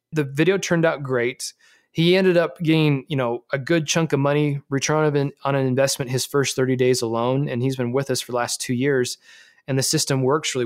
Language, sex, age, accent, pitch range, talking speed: English, male, 20-39, American, 130-160 Hz, 215 wpm